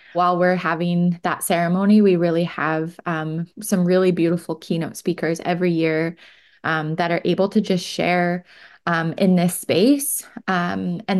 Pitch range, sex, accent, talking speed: 170-190 Hz, female, American, 155 wpm